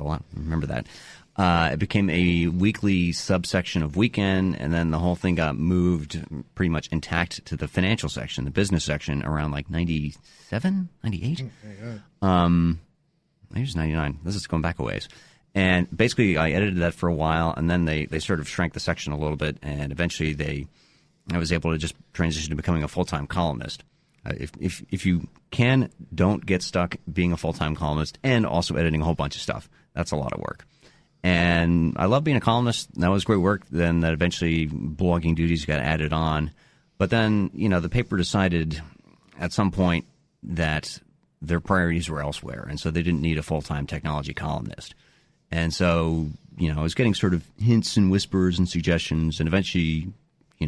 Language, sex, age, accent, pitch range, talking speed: English, male, 30-49, American, 80-95 Hz, 190 wpm